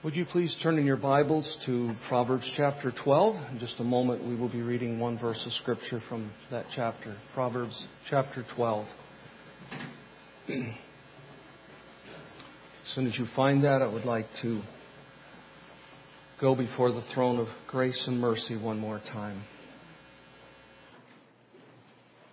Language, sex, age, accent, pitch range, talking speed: English, male, 50-69, American, 115-135 Hz, 135 wpm